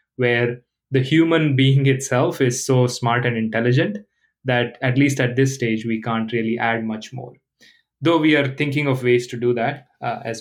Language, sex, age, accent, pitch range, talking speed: English, male, 20-39, Indian, 120-135 Hz, 190 wpm